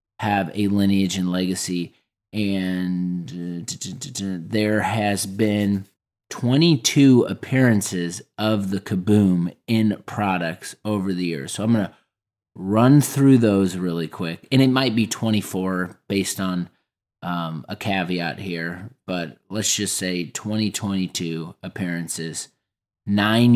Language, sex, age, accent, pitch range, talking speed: English, male, 30-49, American, 90-115 Hz, 130 wpm